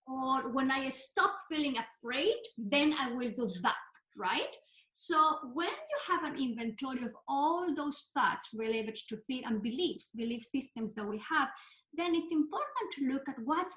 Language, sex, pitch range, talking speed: English, female, 230-315 Hz, 170 wpm